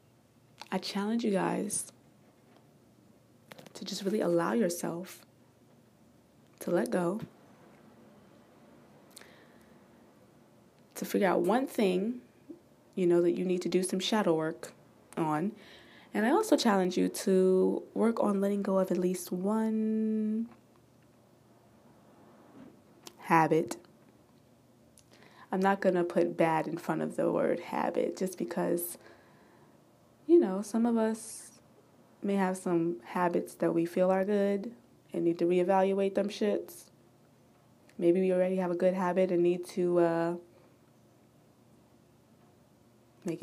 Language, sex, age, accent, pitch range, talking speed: English, female, 20-39, American, 170-205 Hz, 125 wpm